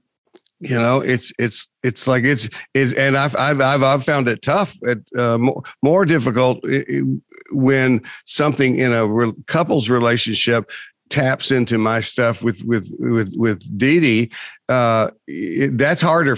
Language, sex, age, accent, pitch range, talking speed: English, male, 50-69, American, 110-130 Hz, 140 wpm